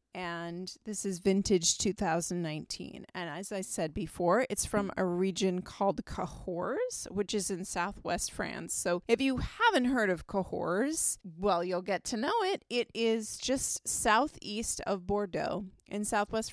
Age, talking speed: 30-49, 155 wpm